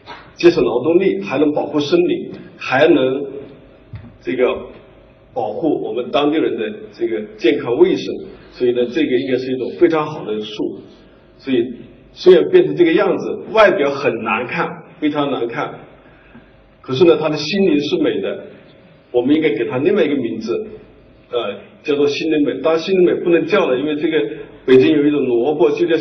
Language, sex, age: Chinese, male, 50-69